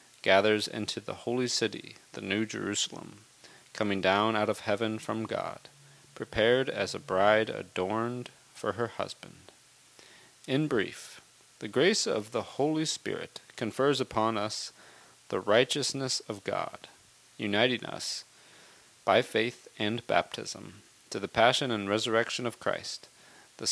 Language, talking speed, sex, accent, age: English, 130 wpm, male, American, 30-49